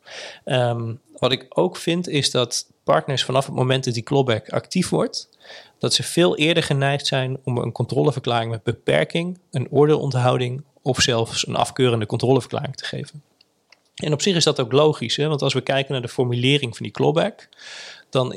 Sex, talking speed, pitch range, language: male, 180 wpm, 120-140 Hz, Dutch